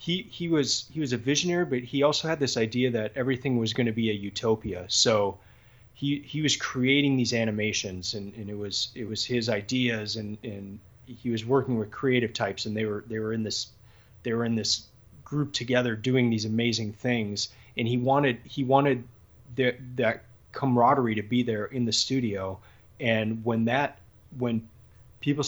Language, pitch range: English, 110-130 Hz